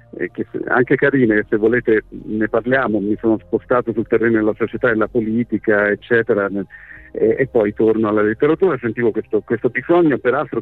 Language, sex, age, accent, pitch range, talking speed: Italian, male, 50-69, native, 110-125 Hz, 160 wpm